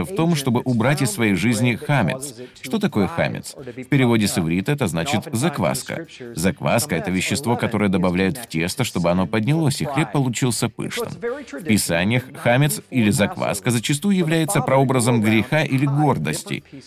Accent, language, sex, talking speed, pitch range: native, Russian, male, 155 wpm, 105-155 Hz